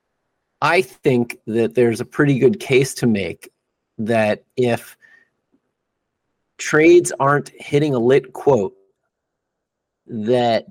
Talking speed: 105 wpm